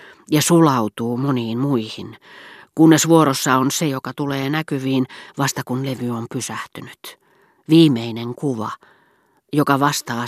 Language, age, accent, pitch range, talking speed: Finnish, 40-59, native, 120-150 Hz, 115 wpm